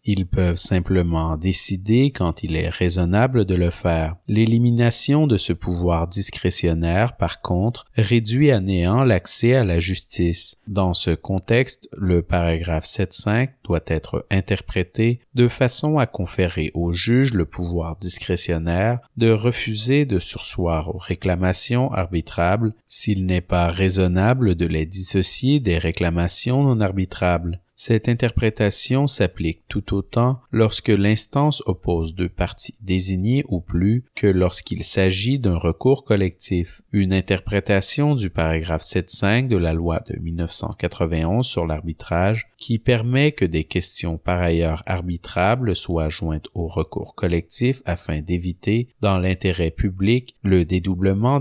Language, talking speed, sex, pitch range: English, 130 wpm, male, 85-115 Hz